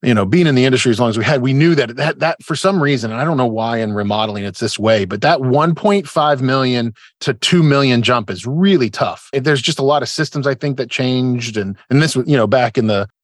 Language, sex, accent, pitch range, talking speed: English, male, American, 105-140 Hz, 270 wpm